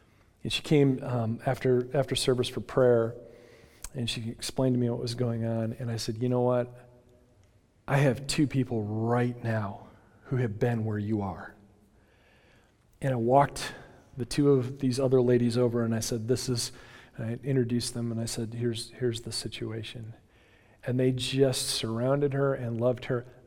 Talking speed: 180 wpm